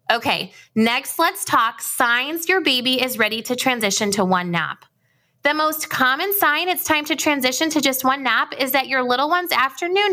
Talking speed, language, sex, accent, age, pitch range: 190 wpm, English, female, American, 20-39, 210-285 Hz